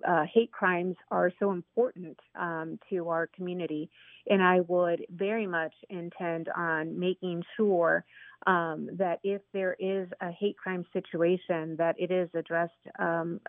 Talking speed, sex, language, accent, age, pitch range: 145 wpm, female, English, American, 40-59, 170-200 Hz